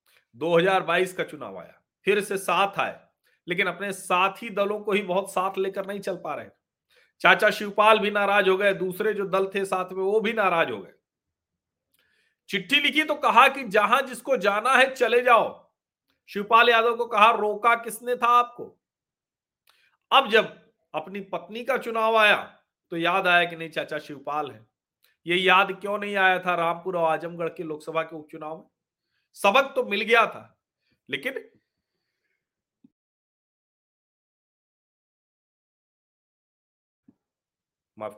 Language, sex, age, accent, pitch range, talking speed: Hindi, male, 40-59, native, 180-235 Hz, 145 wpm